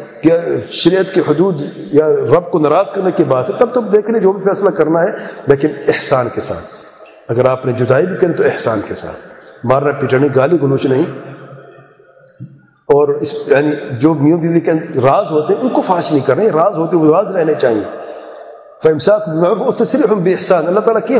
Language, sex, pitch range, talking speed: English, male, 145-215 Hz, 195 wpm